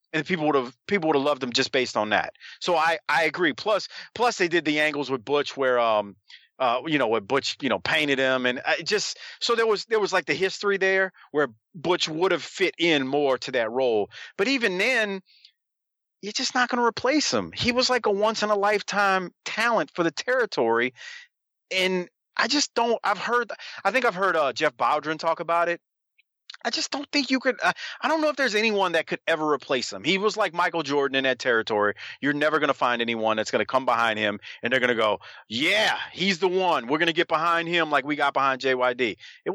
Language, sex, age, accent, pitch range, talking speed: English, male, 30-49, American, 135-220 Hz, 235 wpm